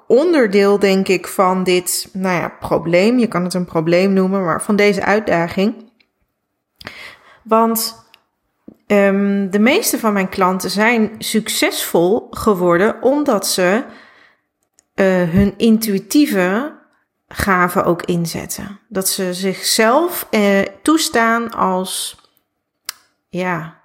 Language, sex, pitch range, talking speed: Dutch, female, 180-220 Hz, 105 wpm